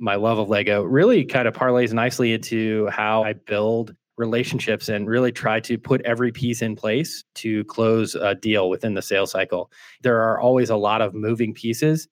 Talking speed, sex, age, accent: 195 wpm, male, 20-39, American